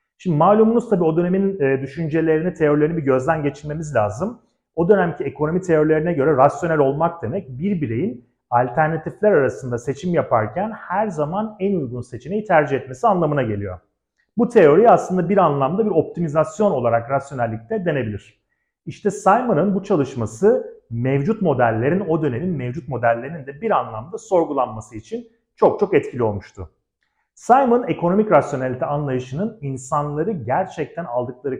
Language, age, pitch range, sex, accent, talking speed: Turkish, 40-59, 130-195 Hz, male, native, 135 wpm